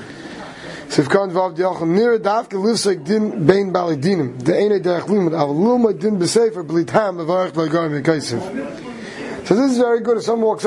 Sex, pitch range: male, 160-205 Hz